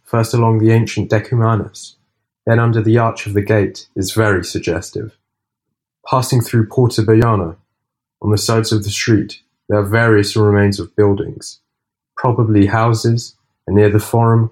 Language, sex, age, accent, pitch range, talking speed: Italian, male, 30-49, British, 105-125 Hz, 155 wpm